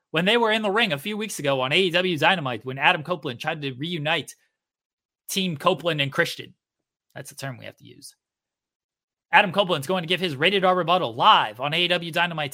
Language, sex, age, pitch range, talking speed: English, male, 30-49, 165-220 Hz, 205 wpm